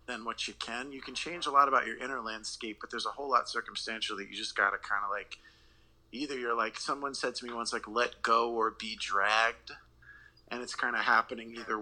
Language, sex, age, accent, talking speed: English, male, 30-49, American, 235 wpm